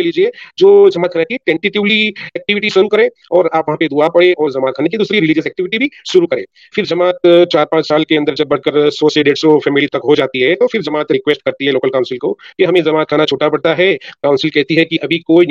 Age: 40-59